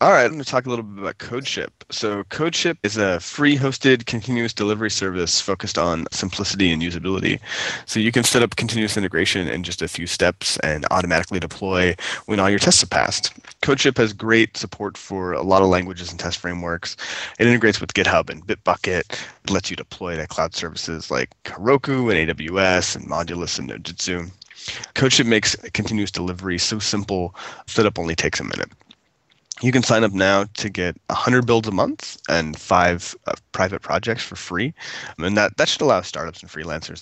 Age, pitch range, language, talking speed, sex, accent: 20-39, 90-115 Hz, English, 190 wpm, male, American